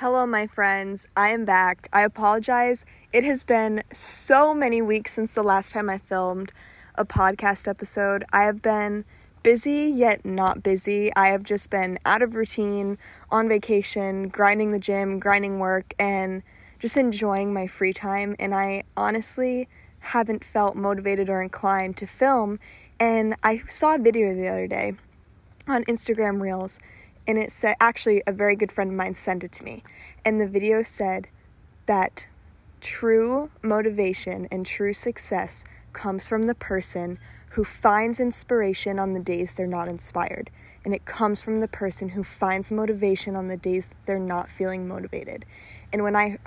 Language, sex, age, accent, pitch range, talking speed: English, female, 20-39, American, 190-220 Hz, 165 wpm